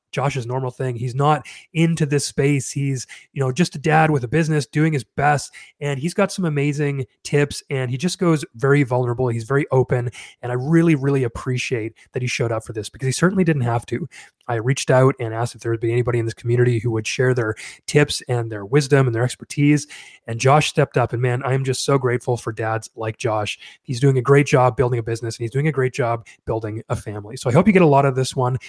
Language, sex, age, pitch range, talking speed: English, male, 20-39, 125-165 Hz, 245 wpm